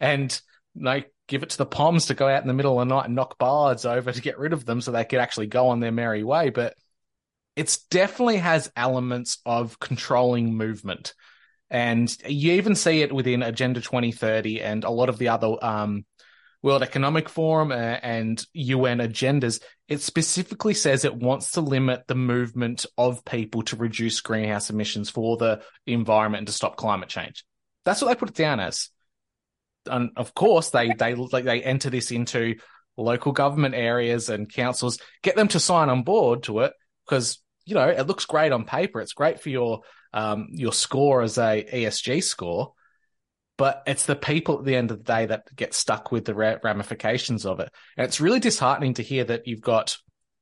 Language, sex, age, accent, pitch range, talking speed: English, male, 20-39, Australian, 115-140 Hz, 195 wpm